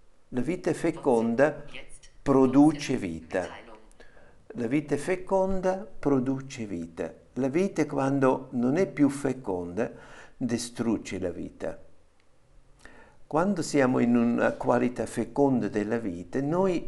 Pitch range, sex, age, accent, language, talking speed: 100-140 Hz, male, 60-79, native, Italian, 105 wpm